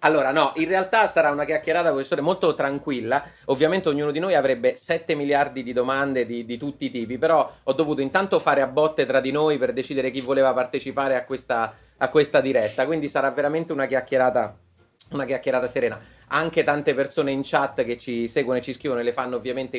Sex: male